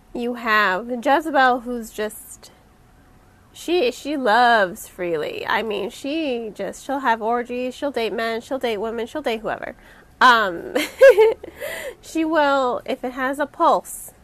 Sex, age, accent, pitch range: female, 20-39, American, 225-275 Hz